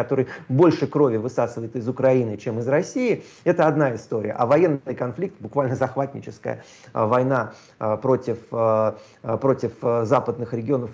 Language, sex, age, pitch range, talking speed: Russian, male, 30-49, 115-140 Hz, 120 wpm